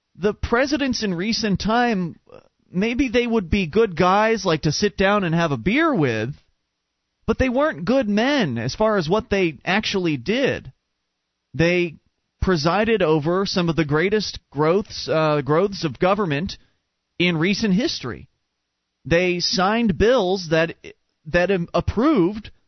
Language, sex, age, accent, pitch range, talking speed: English, male, 30-49, American, 165-235 Hz, 140 wpm